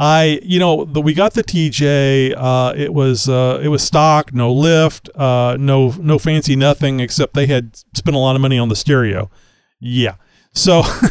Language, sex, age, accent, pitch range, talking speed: English, male, 40-59, American, 125-150 Hz, 190 wpm